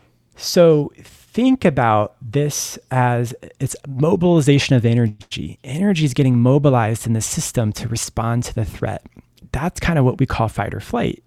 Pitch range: 115-135 Hz